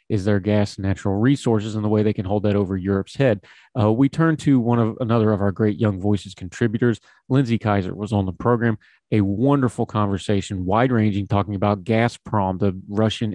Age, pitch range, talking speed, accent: 30-49, 100-120 Hz, 200 wpm, American